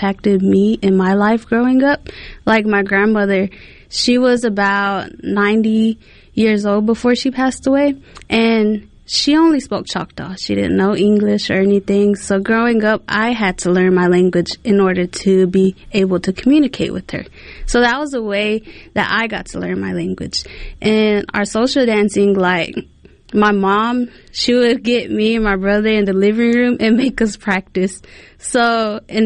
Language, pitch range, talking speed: English, 195-235 Hz, 170 wpm